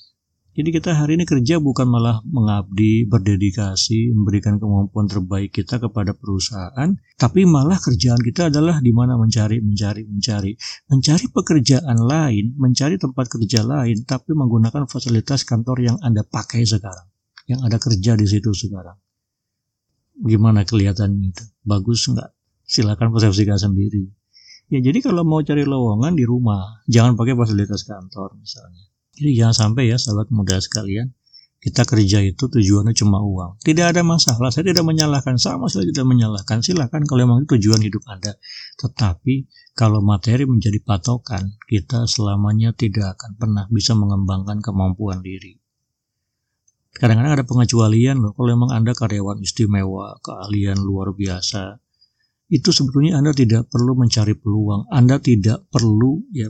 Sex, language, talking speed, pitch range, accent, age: male, Indonesian, 140 wpm, 105-125 Hz, native, 50-69